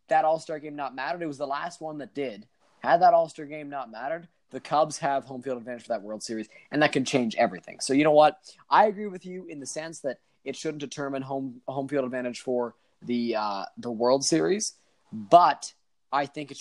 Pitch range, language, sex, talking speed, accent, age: 130-155 Hz, English, male, 225 wpm, American, 20-39